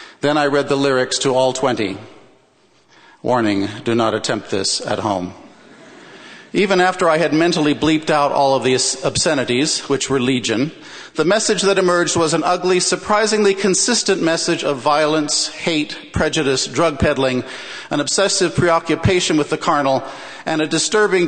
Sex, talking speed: male, 150 wpm